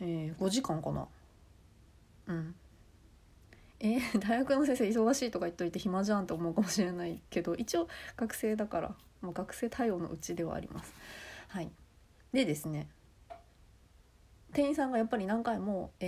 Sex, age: female, 30-49